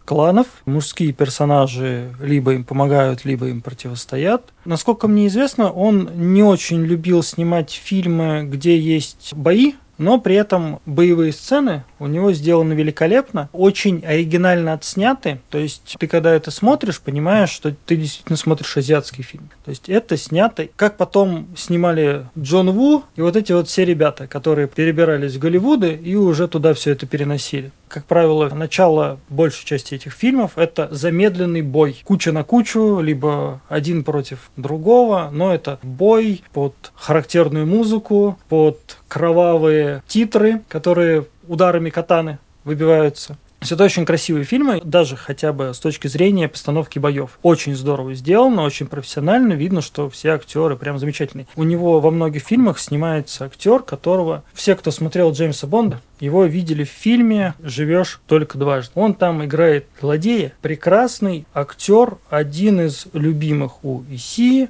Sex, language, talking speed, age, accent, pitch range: male, Russian, 145 wpm, 30-49, native, 145-185 Hz